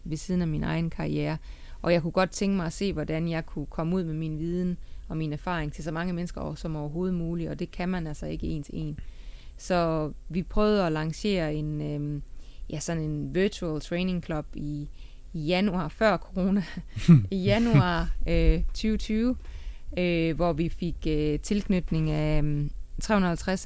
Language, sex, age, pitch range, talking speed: Danish, female, 20-39, 150-185 Hz, 160 wpm